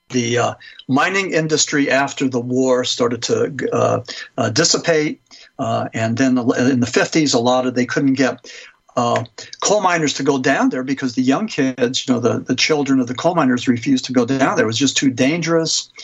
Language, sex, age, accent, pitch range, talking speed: English, male, 60-79, American, 125-140 Hz, 200 wpm